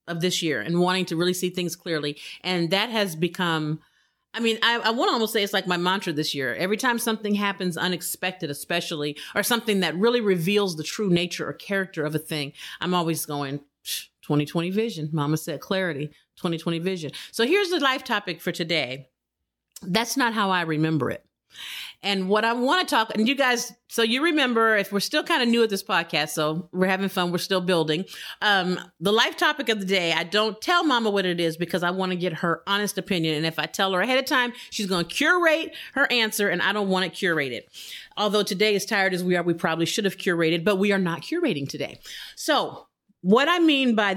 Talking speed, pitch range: 225 wpm, 170-225 Hz